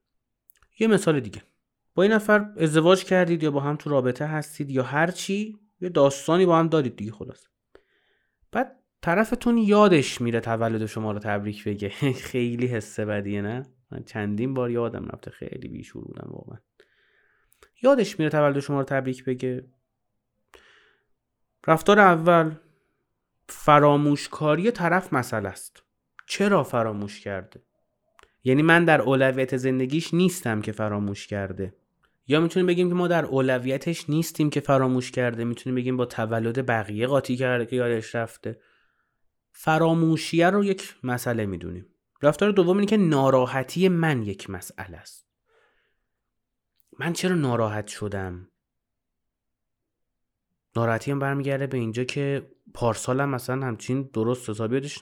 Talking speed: 135 wpm